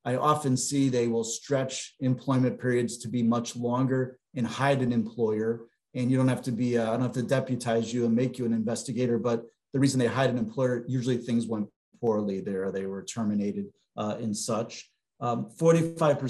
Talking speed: 195 wpm